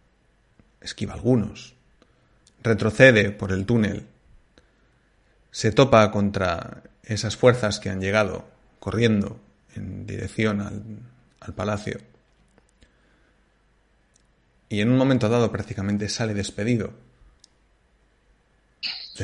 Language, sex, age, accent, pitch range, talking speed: Spanish, male, 30-49, Spanish, 95-110 Hz, 90 wpm